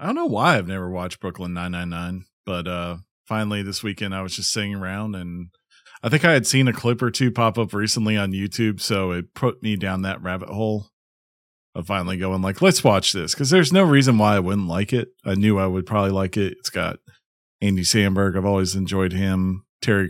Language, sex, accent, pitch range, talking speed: English, male, American, 95-125 Hz, 220 wpm